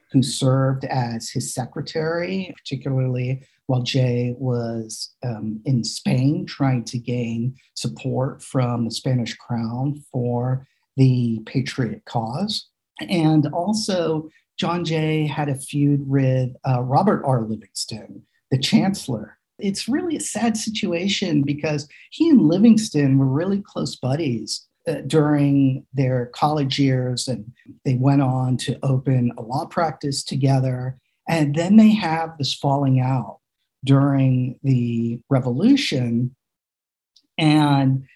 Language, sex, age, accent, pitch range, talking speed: English, male, 50-69, American, 125-155 Hz, 120 wpm